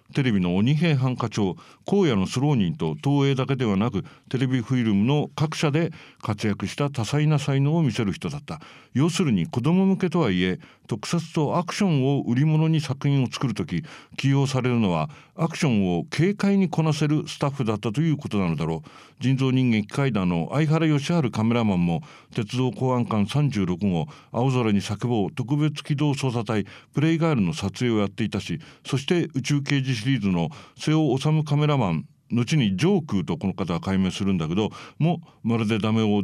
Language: English